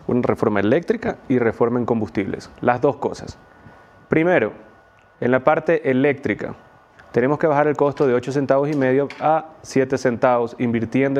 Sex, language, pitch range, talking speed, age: male, English, 125-165 Hz, 155 wpm, 30-49